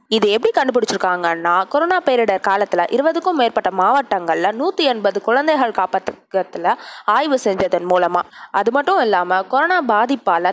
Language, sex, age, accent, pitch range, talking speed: Tamil, female, 20-39, native, 200-275 Hz, 115 wpm